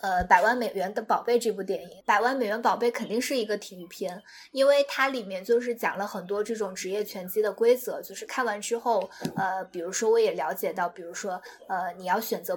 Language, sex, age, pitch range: Chinese, female, 20-39, 195-250 Hz